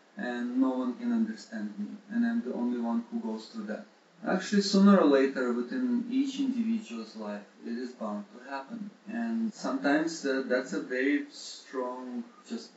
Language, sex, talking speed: English, male, 170 wpm